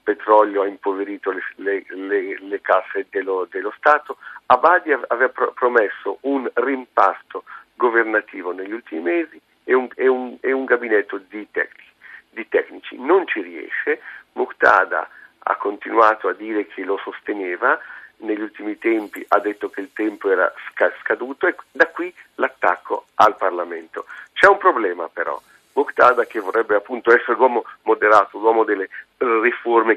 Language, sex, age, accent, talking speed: Italian, male, 50-69, native, 130 wpm